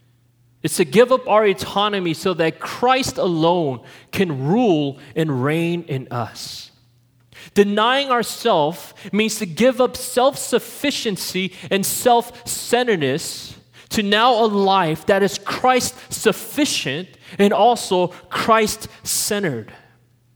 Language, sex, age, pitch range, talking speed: English, male, 30-49, 135-220 Hz, 115 wpm